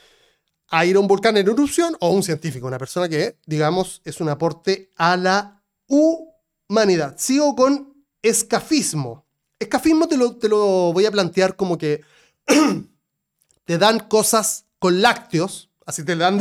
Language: Spanish